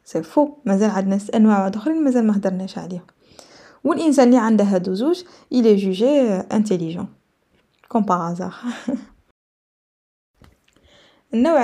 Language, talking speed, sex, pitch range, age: Arabic, 115 wpm, female, 200-245 Hz, 20-39